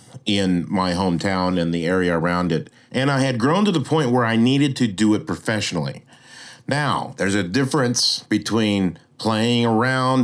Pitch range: 105-135 Hz